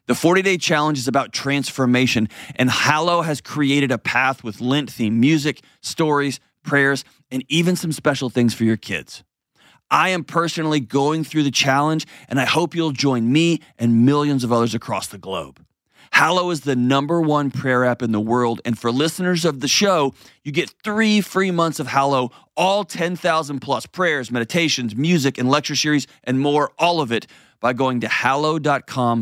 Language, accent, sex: English, American, male